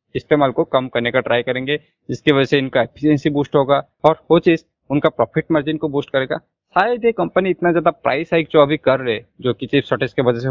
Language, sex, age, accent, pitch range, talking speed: Hindi, male, 20-39, native, 125-155 Hz, 235 wpm